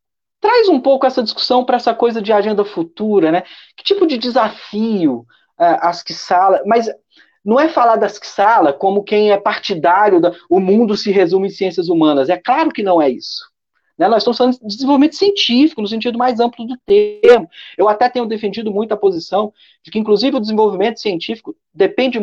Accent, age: Brazilian, 40-59